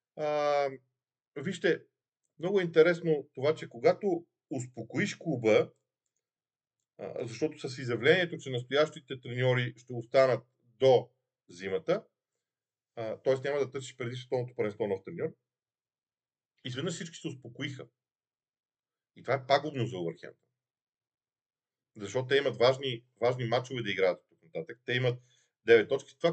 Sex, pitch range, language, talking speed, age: male, 120-160 Hz, Bulgarian, 125 wpm, 40-59